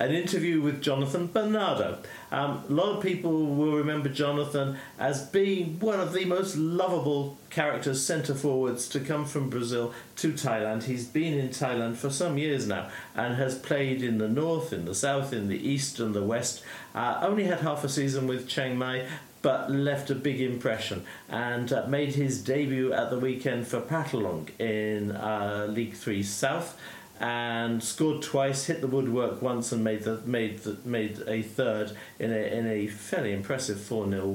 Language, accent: English, British